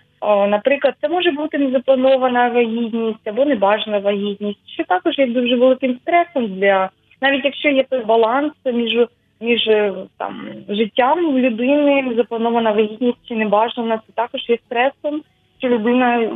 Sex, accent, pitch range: female, native, 210-250 Hz